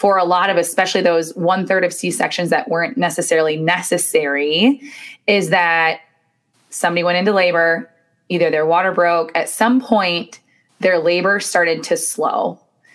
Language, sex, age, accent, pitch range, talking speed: English, female, 20-39, American, 165-200 Hz, 145 wpm